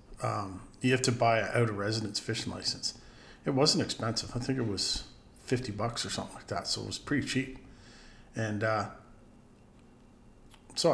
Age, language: 40-59, English